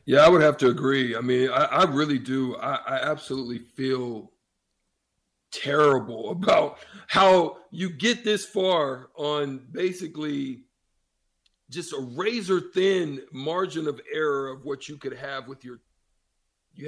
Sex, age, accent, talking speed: male, 50-69, American, 140 wpm